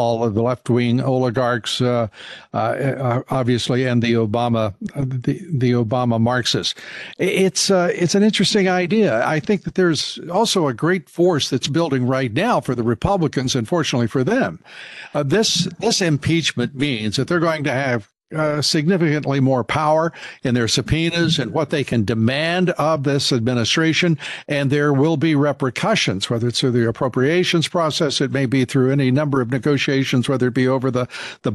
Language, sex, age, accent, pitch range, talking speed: English, male, 60-79, American, 125-160 Hz, 170 wpm